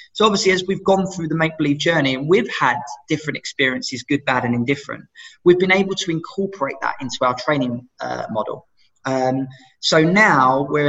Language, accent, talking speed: English, British, 180 wpm